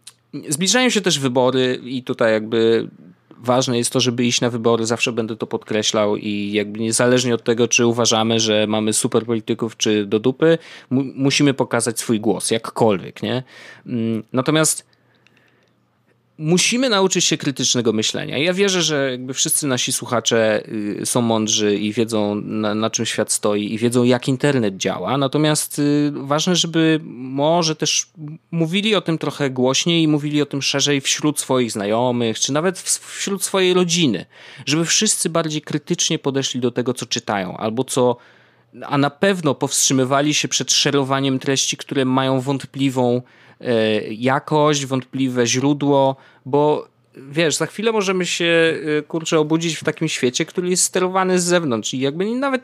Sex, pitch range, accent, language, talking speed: male, 115-150 Hz, native, Polish, 150 wpm